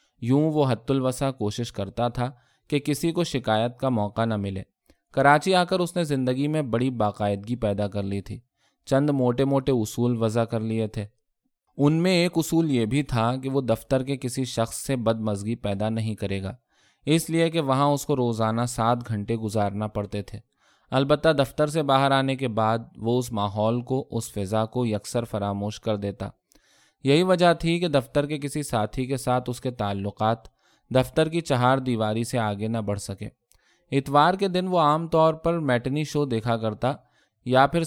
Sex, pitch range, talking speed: male, 110-145 Hz, 190 wpm